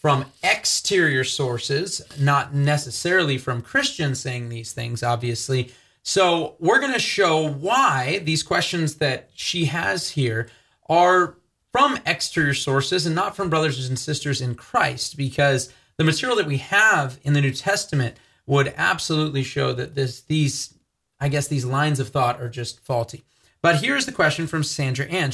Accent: American